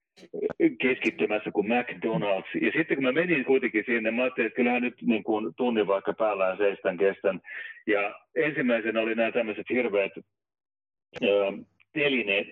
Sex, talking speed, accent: male, 135 wpm, native